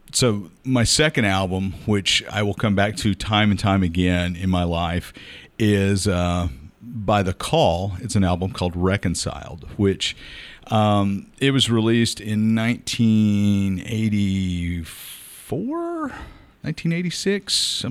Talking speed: 115 wpm